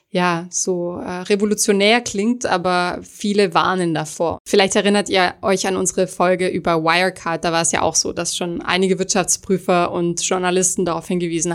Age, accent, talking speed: 20-39, German, 165 wpm